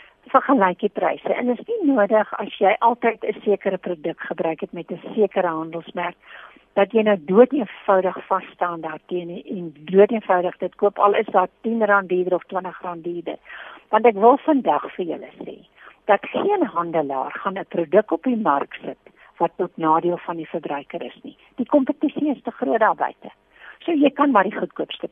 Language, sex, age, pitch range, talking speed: English, female, 60-79, 180-230 Hz, 190 wpm